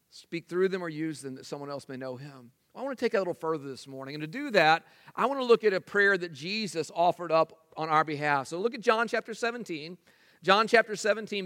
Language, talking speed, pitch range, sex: English, 250 wpm, 165-225 Hz, male